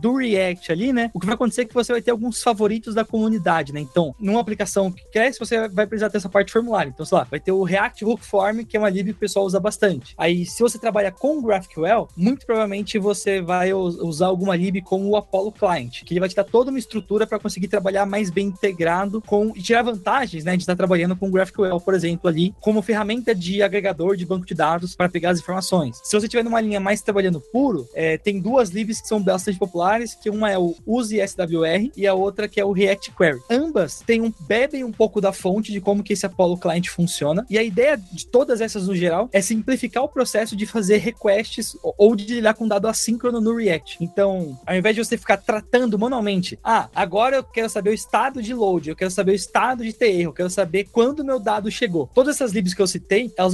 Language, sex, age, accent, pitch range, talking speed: Portuguese, male, 20-39, Brazilian, 185-225 Hz, 240 wpm